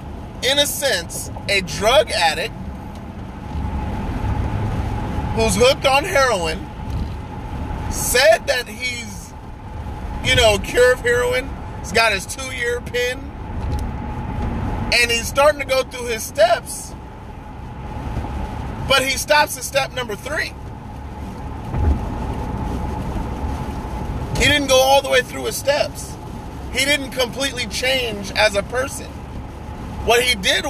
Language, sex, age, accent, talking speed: English, male, 30-49, American, 115 wpm